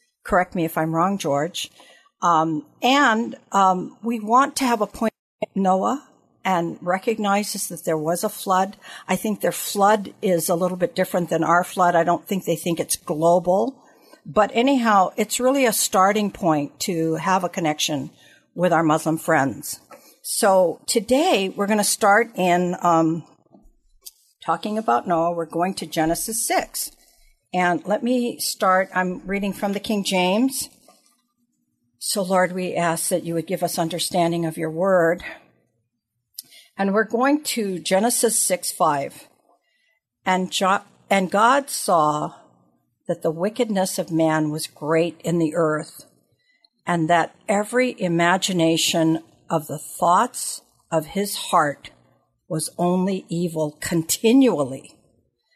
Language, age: English, 60-79